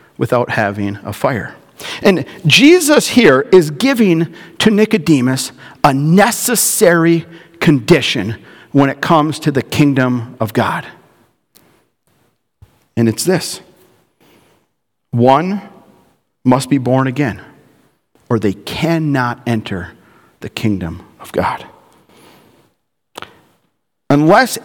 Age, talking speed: 50-69, 95 wpm